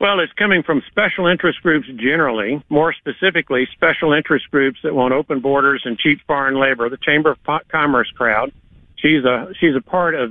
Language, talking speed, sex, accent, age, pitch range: English, 185 wpm, male, American, 50-69, 130-155 Hz